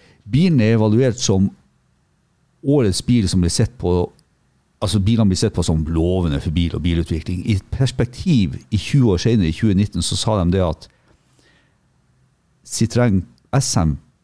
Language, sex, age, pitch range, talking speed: English, male, 50-69, 90-120 Hz, 145 wpm